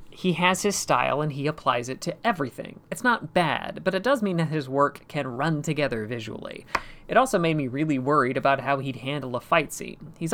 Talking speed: 220 wpm